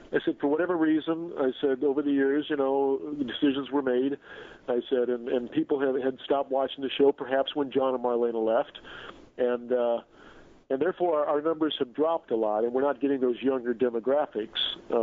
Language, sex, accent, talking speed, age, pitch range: English, male, American, 200 wpm, 50-69, 125-150 Hz